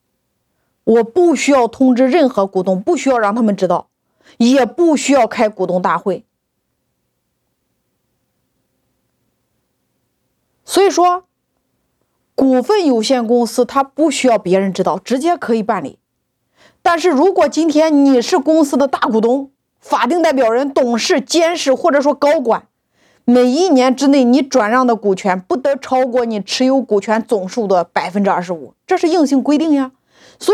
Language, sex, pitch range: Chinese, female, 235-310 Hz